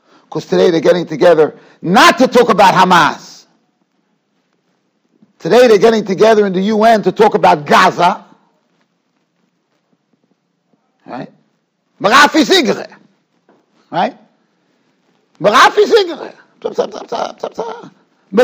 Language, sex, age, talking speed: English, male, 60-79, 75 wpm